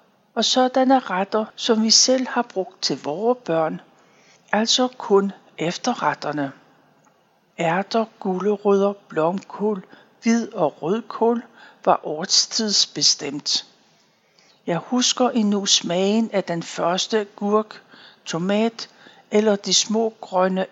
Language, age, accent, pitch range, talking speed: Danish, 60-79, native, 185-235 Hz, 100 wpm